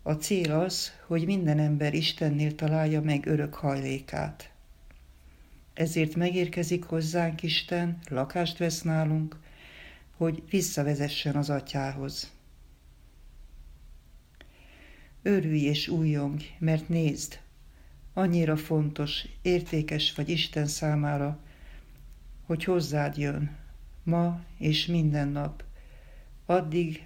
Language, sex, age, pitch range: Hungarian, female, 60-79, 100-160 Hz